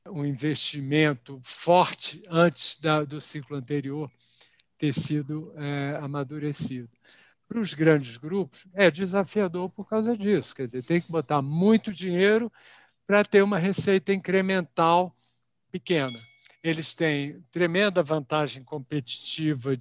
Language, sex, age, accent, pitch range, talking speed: Portuguese, male, 60-79, Brazilian, 140-180 Hz, 120 wpm